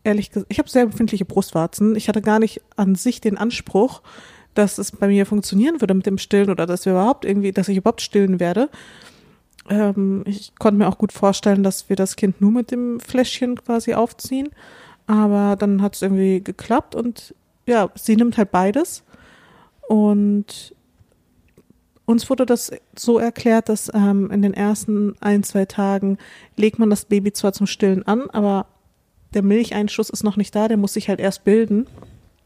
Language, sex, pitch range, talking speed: German, female, 200-235 Hz, 180 wpm